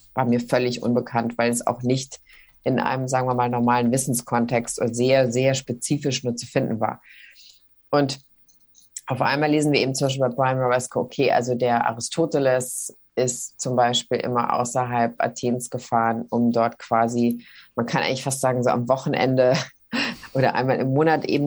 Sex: female